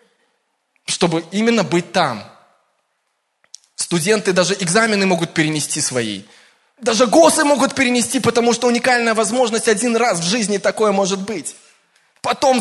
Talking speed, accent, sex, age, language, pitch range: 125 wpm, native, male, 20-39, Russian, 145-205 Hz